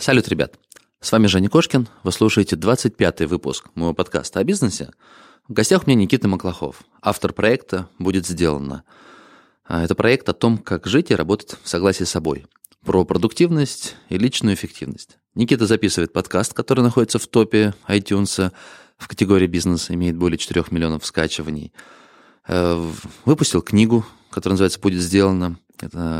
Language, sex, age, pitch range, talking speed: Russian, male, 20-39, 85-110 Hz, 145 wpm